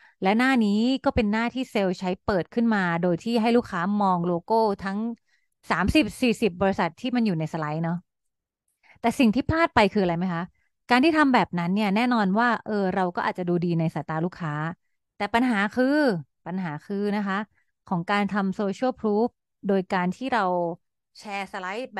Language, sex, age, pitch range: Thai, female, 30-49, 180-235 Hz